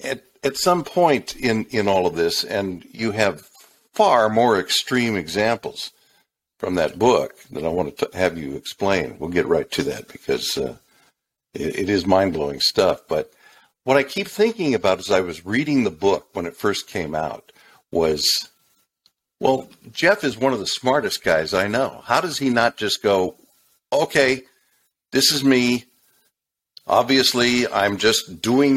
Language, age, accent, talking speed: English, 60-79, American, 165 wpm